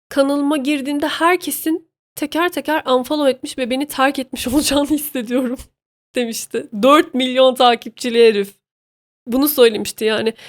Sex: female